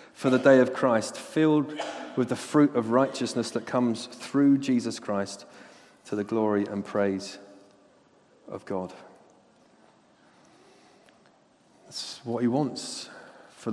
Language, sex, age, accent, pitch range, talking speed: English, male, 40-59, British, 115-150 Hz, 120 wpm